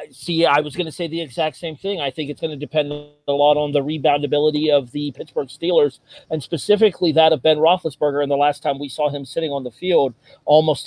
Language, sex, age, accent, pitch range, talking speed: English, male, 40-59, American, 140-180 Hz, 235 wpm